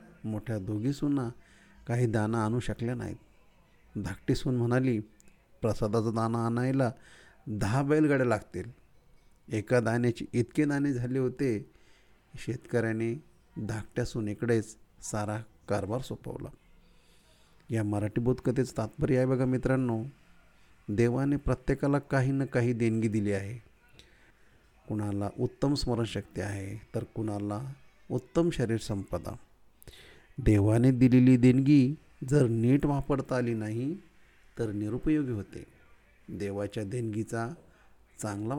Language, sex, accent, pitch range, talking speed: Marathi, male, native, 105-130 Hz, 80 wpm